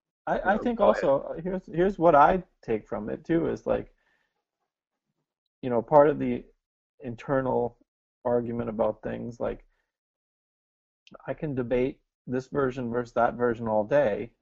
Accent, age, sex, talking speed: American, 30-49, male, 140 wpm